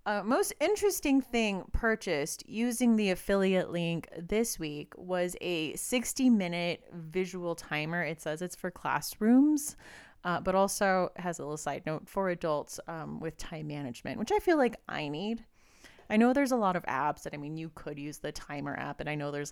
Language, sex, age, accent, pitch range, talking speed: English, female, 30-49, American, 155-200 Hz, 190 wpm